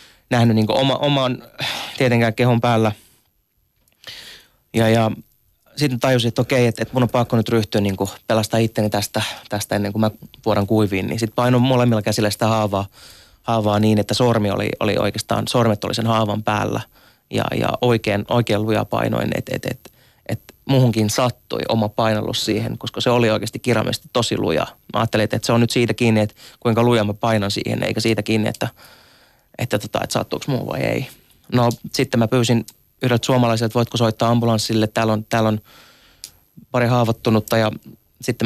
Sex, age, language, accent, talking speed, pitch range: male, 30-49, Finnish, native, 180 wpm, 110-120 Hz